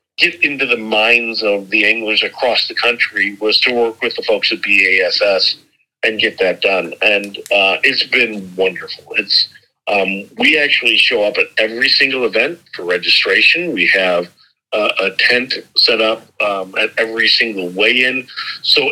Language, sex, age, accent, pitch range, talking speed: English, male, 50-69, American, 105-145 Hz, 165 wpm